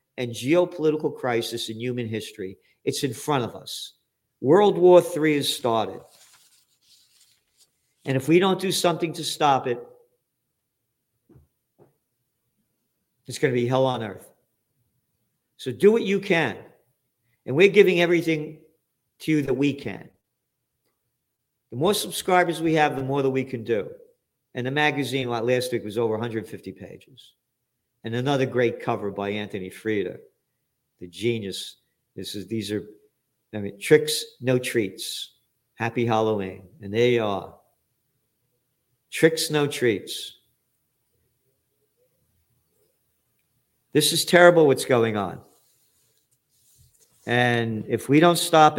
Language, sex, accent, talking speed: English, male, American, 125 wpm